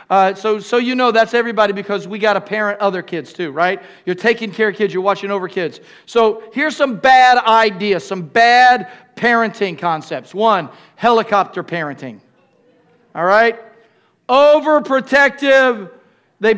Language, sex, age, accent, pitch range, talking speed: English, male, 40-59, American, 165-230 Hz, 150 wpm